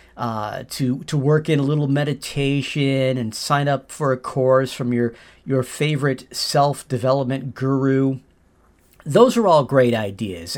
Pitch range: 120-165 Hz